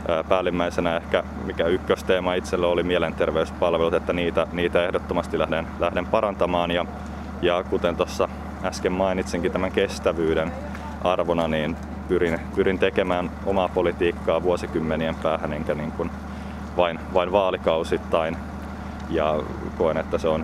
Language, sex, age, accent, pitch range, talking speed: Finnish, male, 20-39, native, 75-90 Hz, 115 wpm